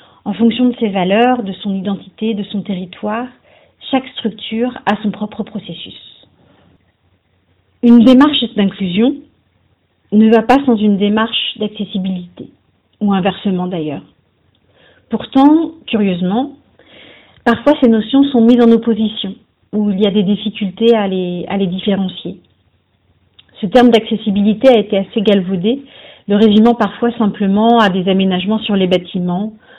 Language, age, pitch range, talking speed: French, 40-59, 185-225 Hz, 135 wpm